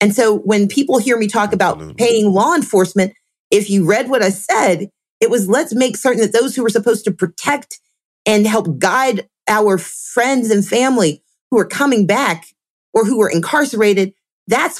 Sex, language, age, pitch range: female, English, 40-59, 190-240 Hz